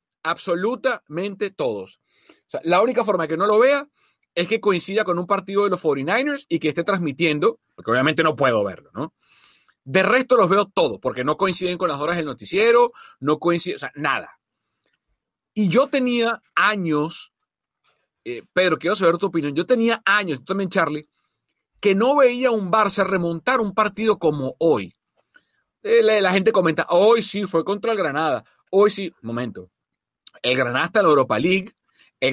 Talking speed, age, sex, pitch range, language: 185 wpm, 40-59, male, 160-220 Hz, Spanish